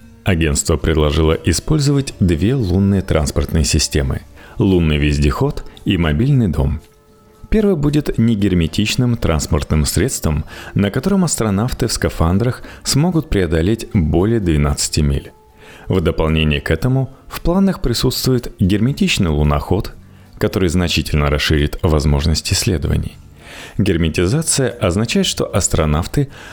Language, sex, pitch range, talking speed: Russian, male, 80-115 Hz, 100 wpm